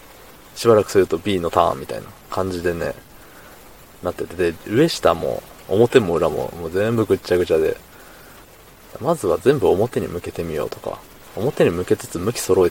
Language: Japanese